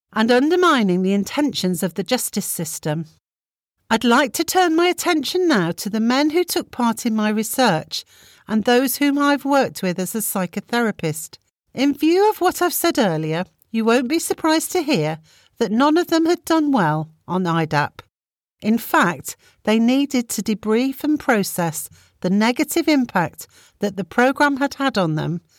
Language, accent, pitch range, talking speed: English, British, 185-280 Hz, 170 wpm